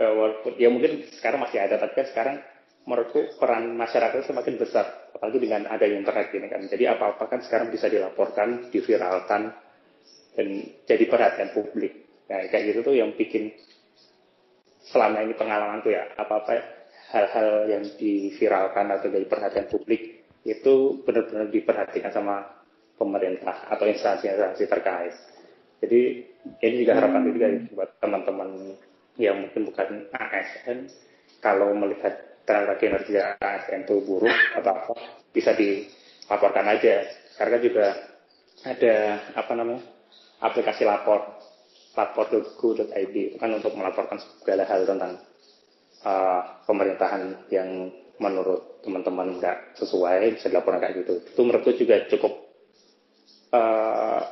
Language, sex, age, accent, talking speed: Indonesian, male, 30-49, native, 125 wpm